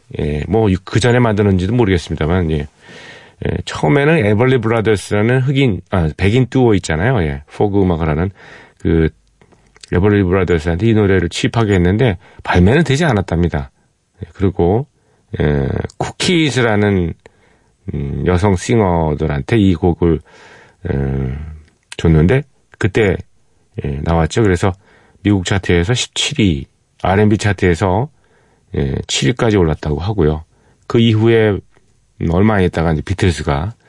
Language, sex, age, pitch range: Korean, male, 40-59, 80-110 Hz